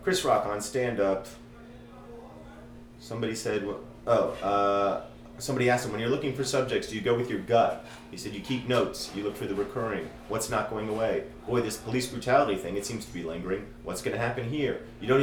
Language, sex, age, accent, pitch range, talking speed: English, male, 30-49, American, 95-120 Hz, 210 wpm